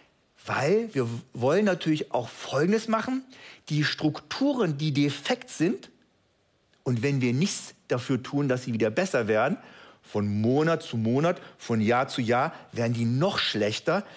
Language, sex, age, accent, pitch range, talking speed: German, male, 50-69, German, 125-175 Hz, 150 wpm